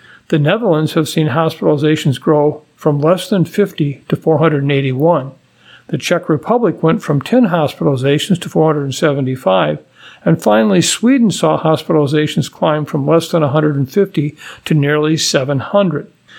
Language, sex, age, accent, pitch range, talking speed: English, male, 50-69, American, 150-175 Hz, 125 wpm